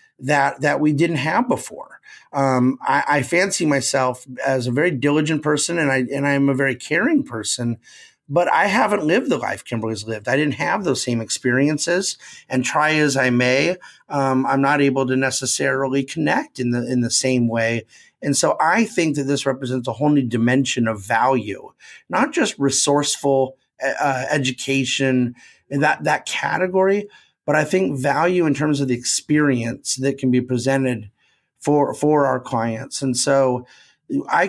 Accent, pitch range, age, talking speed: American, 125-145 Hz, 30-49, 170 wpm